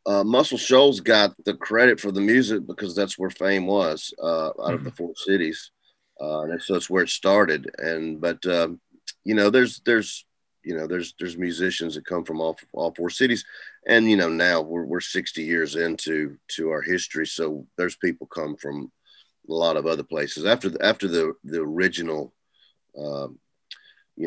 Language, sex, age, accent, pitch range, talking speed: English, male, 30-49, American, 80-95 Hz, 190 wpm